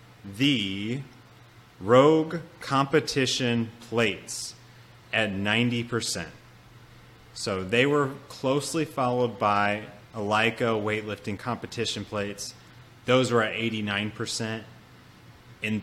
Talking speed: 90 wpm